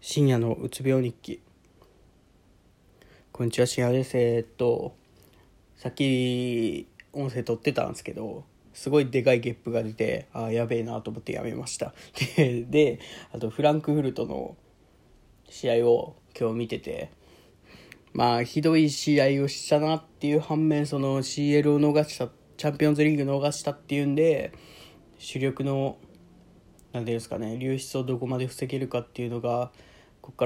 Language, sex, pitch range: Japanese, male, 120-145 Hz